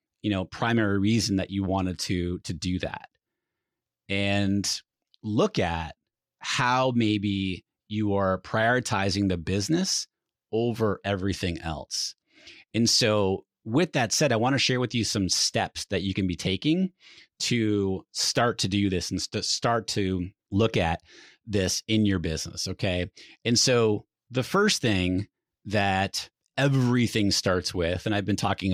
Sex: male